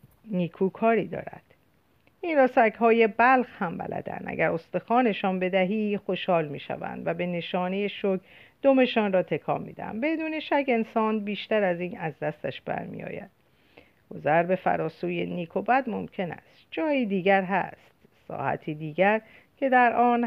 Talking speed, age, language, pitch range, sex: 140 wpm, 50-69, Persian, 175-235 Hz, female